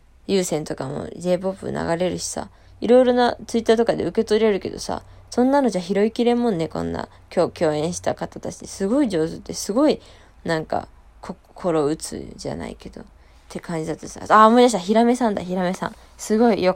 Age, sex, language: 20-39, female, Japanese